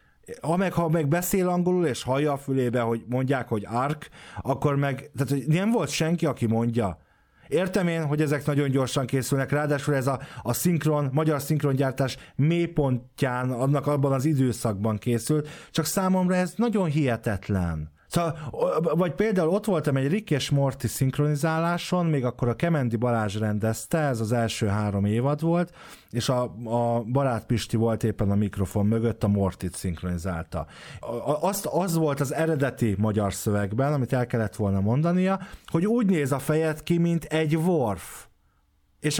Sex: male